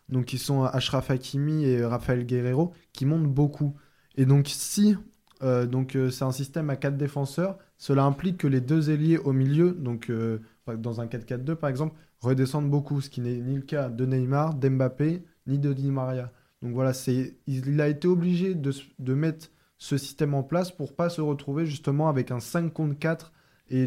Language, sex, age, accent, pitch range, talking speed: French, male, 20-39, French, 130-150 Hz, 200 wpm